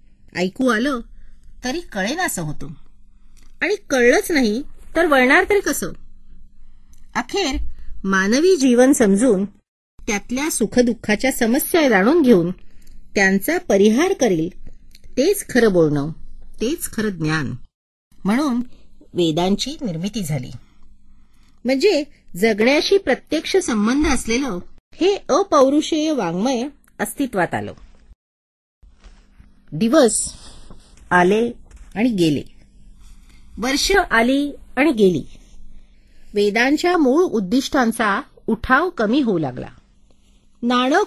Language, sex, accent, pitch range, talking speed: Marathi, female, native, 180-285 Hz, 90 wpm